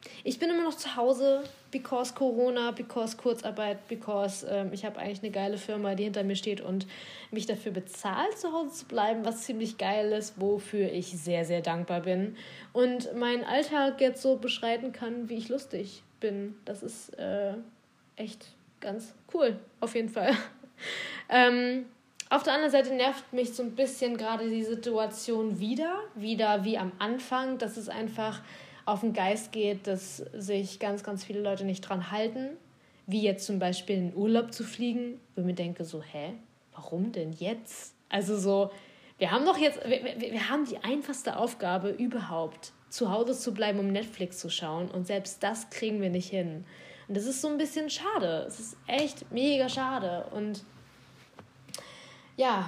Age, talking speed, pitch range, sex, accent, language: 20-39, 175 wpm, 200-245 Hz, female, German, German